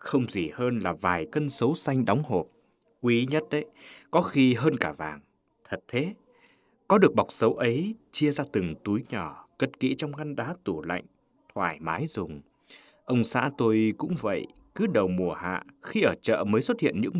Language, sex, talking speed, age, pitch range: Vietnamese, male, 195 wpm, 20-39, 110-155 Hz